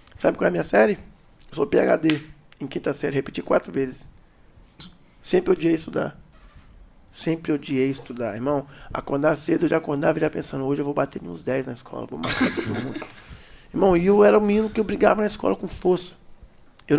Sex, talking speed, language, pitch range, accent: male, 200 wpm, Portuguese, 140-180 Hz, Brazilian